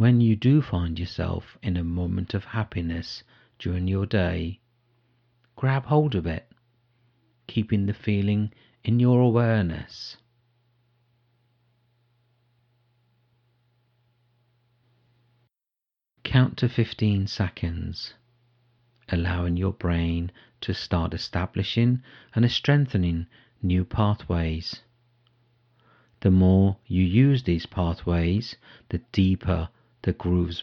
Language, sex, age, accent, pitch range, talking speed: English, male, 50-69, British, 90-120 Hz, 90 wpm